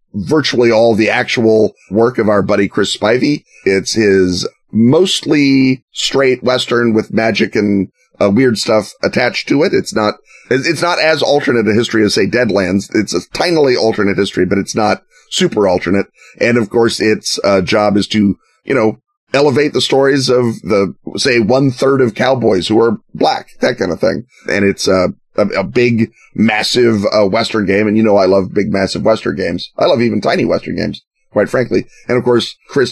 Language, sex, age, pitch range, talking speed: English, male, 30-49, 100-120 Hz, 185 wpm